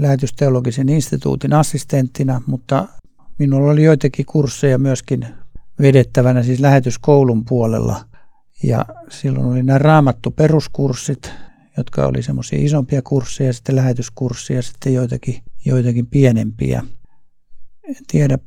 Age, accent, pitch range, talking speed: 60-79, native, 120-140 Hz, 100 wpm